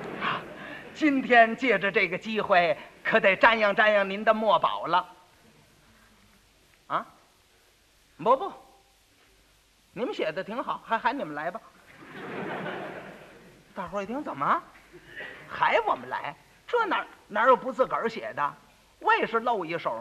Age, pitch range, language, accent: 50-69, 180-270 Hz, Chinese, native